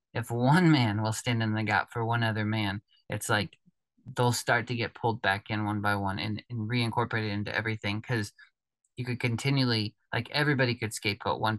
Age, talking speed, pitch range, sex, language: 20-39, 195 wpm, 105-120 Hz, male, English